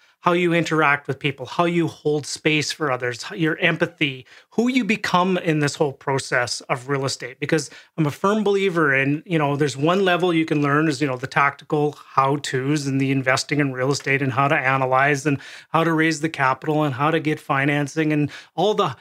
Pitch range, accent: 140-165 Hz, American